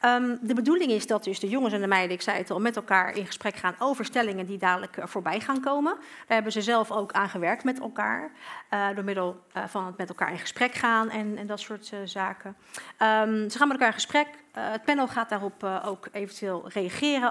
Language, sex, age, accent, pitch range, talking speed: Dutch, female, 40-59, Dutch, 205-265 Hz, 230 wpm